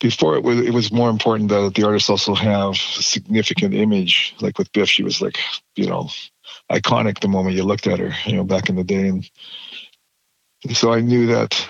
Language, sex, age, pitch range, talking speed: English, male, 50-69, 95-115 Hz, 215 wpm